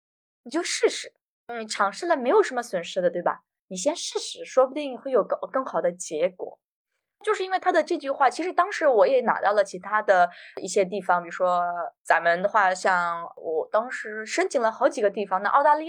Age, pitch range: 20-39, 190-315 Hz